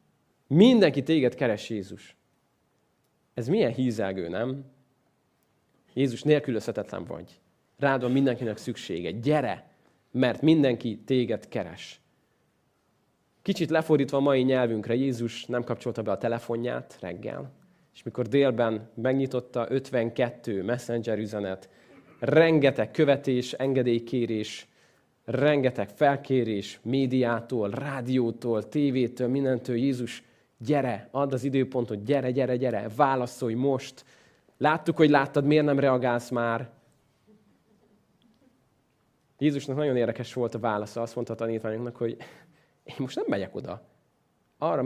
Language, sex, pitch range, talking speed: Hungarian, male, 115-140 Hz, 110 wpm